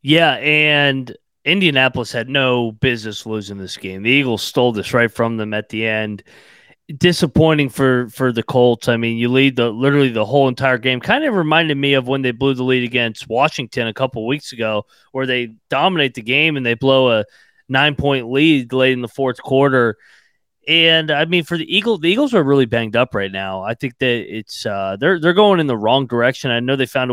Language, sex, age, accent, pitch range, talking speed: English, male, 30-49, American, 120-145 Hz, 215 wpm